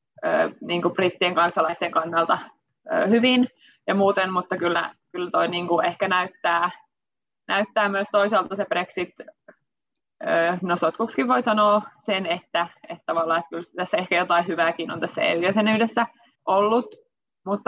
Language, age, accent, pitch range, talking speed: Finnish, 20-39, native, 180-230 Hz, 145 wpm